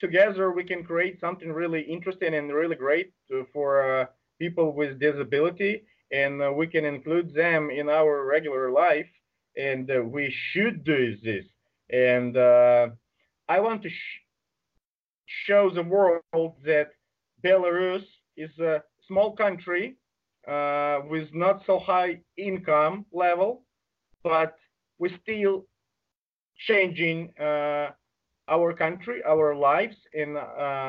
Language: English